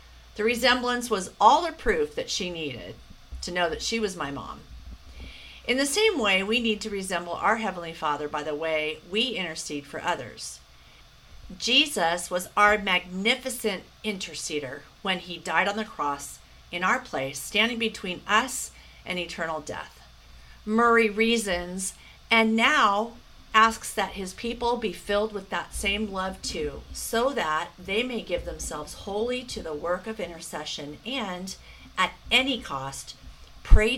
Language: English